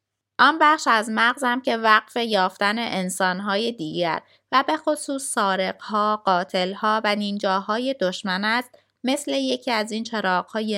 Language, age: Persian, 20-39